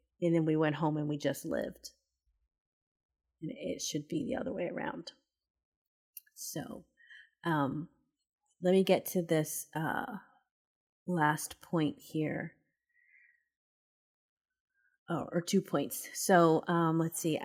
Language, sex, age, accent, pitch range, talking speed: English, female, 30-49, American, 160-200 Hz, 120 wpm